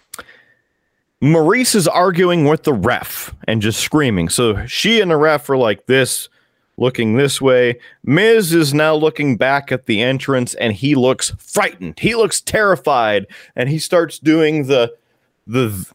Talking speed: 155 wpm